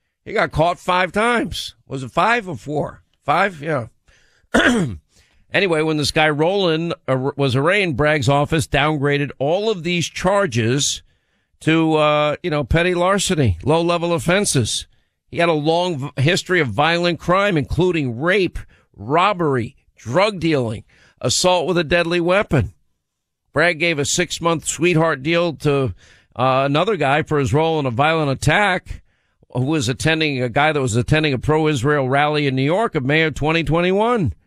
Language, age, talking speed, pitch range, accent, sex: English, 50-69, 155 wpm, 135-170 Hz, American, male